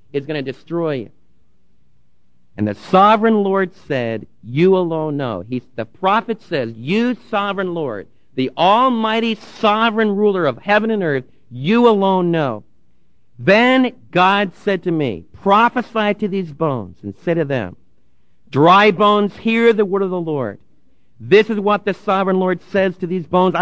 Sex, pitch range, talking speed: male, 165-230 Hz, 160 wpm